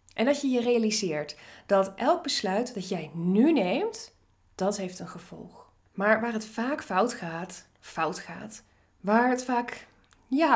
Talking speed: 160 wpm